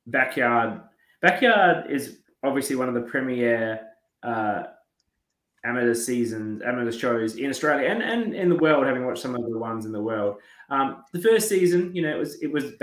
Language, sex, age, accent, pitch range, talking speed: English, male, 20-39, Australian, 120-140 Hz, 185 wpm